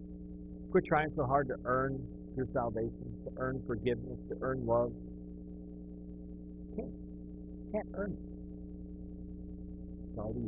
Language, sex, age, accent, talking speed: English, male, 50-69, American, 115 wpm